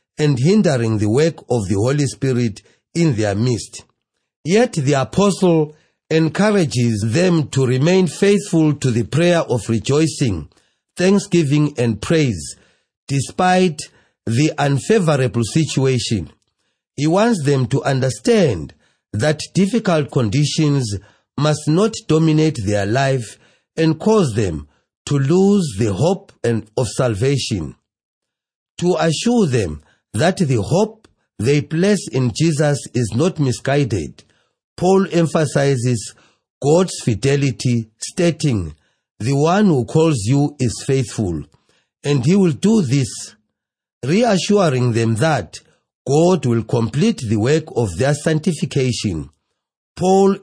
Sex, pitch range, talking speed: male, 120-165 Hz, 115 wpm